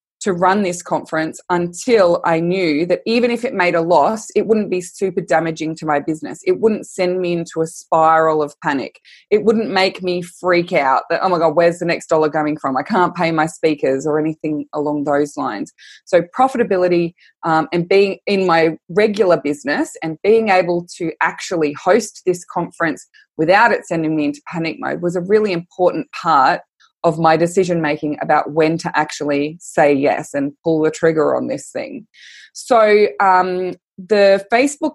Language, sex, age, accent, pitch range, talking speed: English, female, 20-39, Australian, 160-215 Hz, 180 wpm